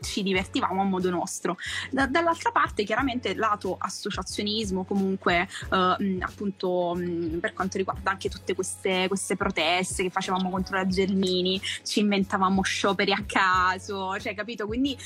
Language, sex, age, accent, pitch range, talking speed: Italian, female, 20-39, native, 185-215 Hz, 145 wpm